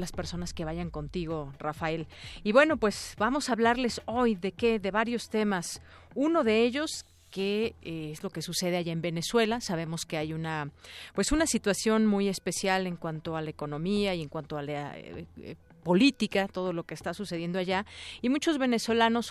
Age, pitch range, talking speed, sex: 40-59, 170-215 Hz, 195 wpm, female